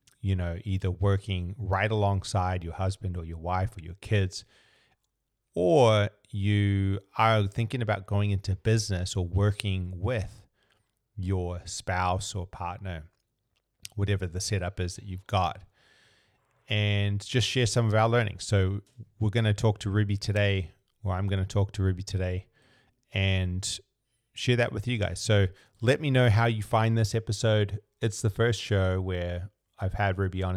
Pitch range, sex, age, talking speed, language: 95-115 Hz, male, 30-49, 160 wpm, English